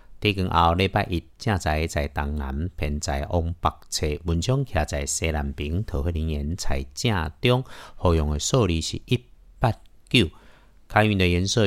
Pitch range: 80-105 Hz